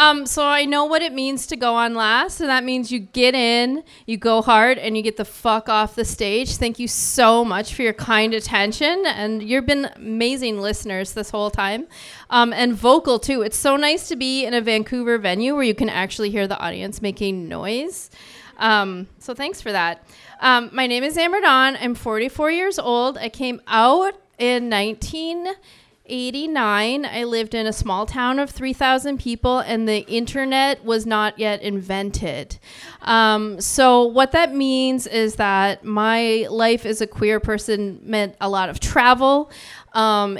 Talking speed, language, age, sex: 180 wpm, English, 30-49, female